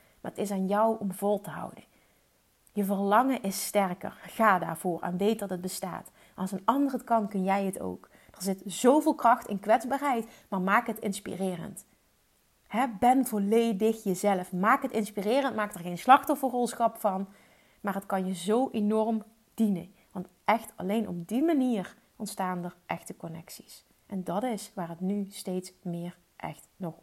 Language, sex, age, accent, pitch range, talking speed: Dutch, female, 30-49, Dutch, 190-230 Hz, 170 wpm